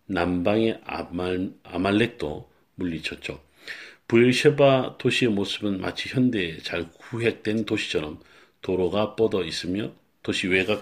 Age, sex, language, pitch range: 40-59, male, Korean, 90-120 Hz